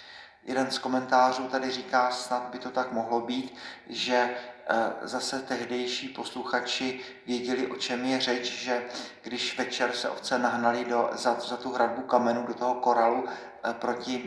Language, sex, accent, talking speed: Czech, male, native, 145 wpm